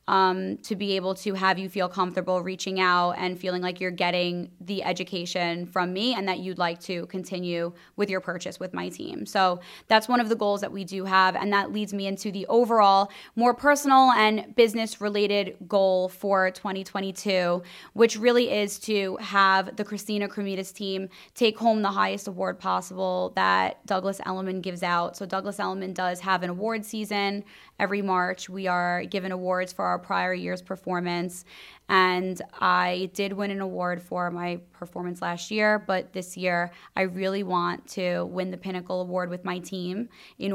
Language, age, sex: English, 20-39, female